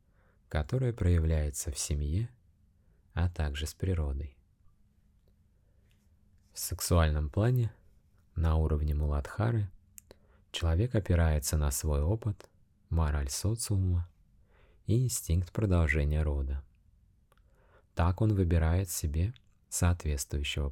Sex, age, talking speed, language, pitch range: male, 30-49, 85 wpm, Russian, 75-100 Hz